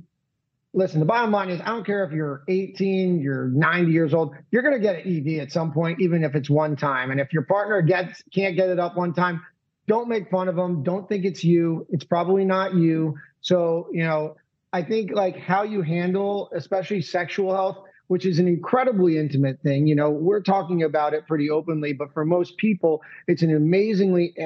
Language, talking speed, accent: English, 210 wpm, American